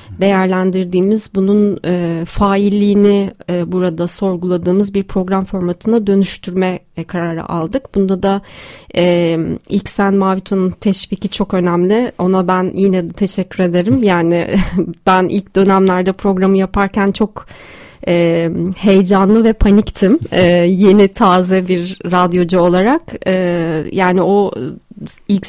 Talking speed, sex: 115 wpm, female